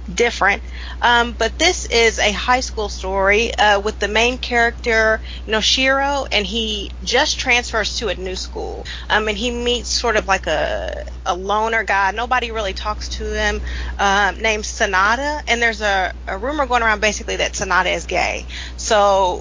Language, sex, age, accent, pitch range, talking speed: English, female, 30-49, American, 195-245 Hz, 185 wpm